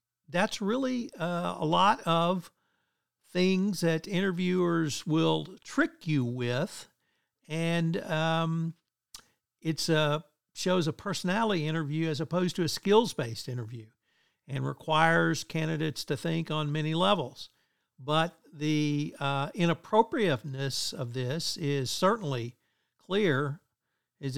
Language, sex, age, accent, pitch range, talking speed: English, male, 60-79, American, 145-190 Hz, 110 wpm